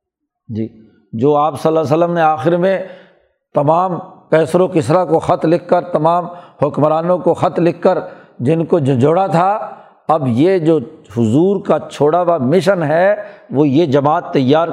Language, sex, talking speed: Urdu, male, 170 wpm